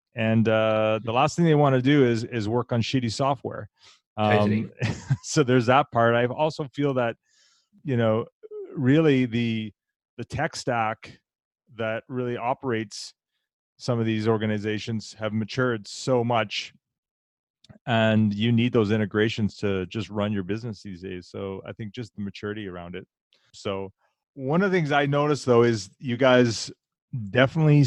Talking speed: 160 wpm